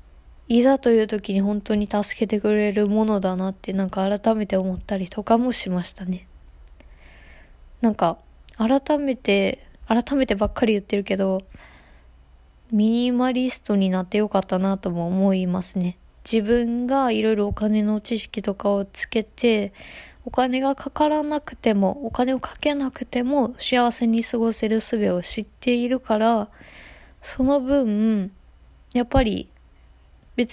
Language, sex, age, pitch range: Japanese, female, 20-39, 195-235 Hz